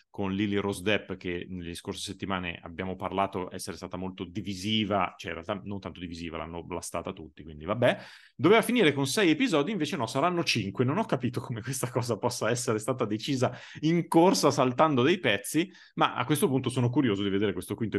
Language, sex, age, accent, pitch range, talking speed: Italian, male, 30-49, native, 95-130 Hz, 195 wpm